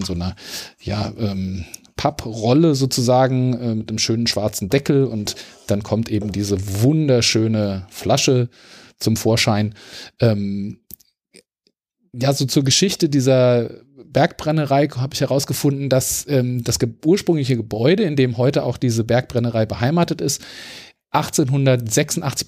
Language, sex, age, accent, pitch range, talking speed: German, male, 40-59, German, 115-150 Hz, 125 wpm